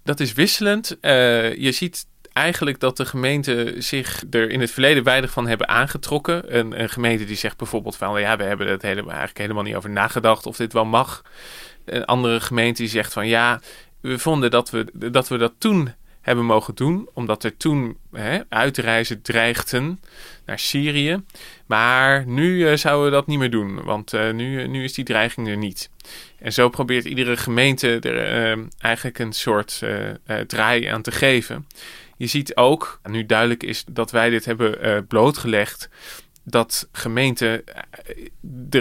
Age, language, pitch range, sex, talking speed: 20-39, Dutch, 115-135 Hz, male, 175 wpm